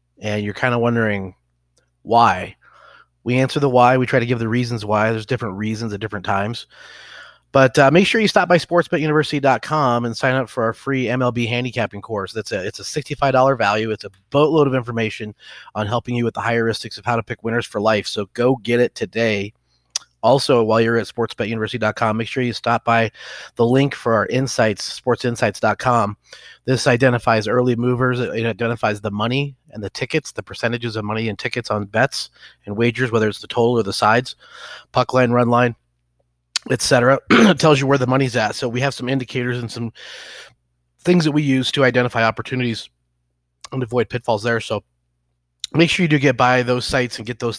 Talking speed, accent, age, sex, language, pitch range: 195 wpm, American, 30-49, male, English, 110-130 Hz